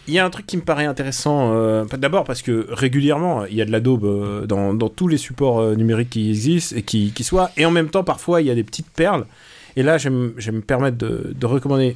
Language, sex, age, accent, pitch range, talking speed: French, male, 30-49, French, 125-170 Hz, 270 wpm